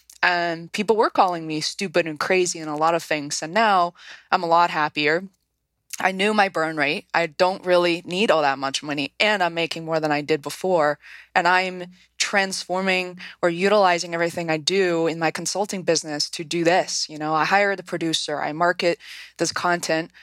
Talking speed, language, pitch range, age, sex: 195 wpm, English, 165-195 Hz, 20-39, female